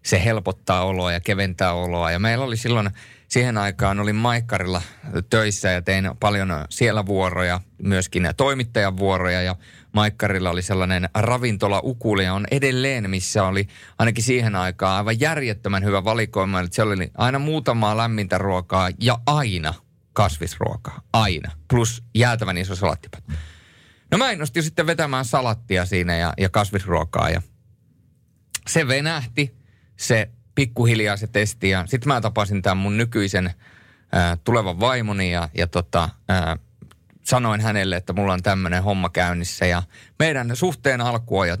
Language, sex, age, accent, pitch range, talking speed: Finnish, male, 30-49, native, 95-120 Hz, 140 wpm